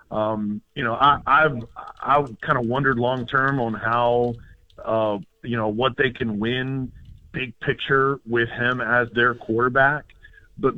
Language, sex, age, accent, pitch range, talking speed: English, male, 50-69, American, 115-130 Hz, 155 wpm